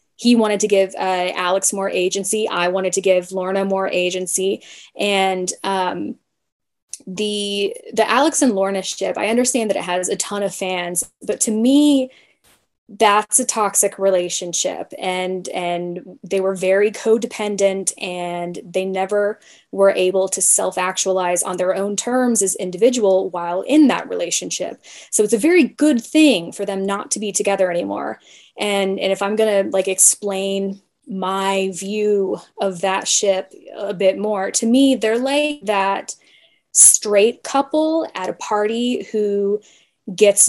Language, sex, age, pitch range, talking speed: English, female, 10-29, 185-215 Hz, 155 wpm